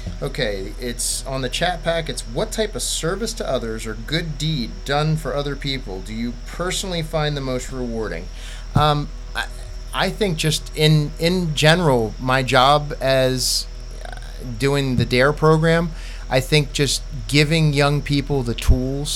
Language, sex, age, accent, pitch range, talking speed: English, male, 30-49, American, 120-140 Hz, 155 wpm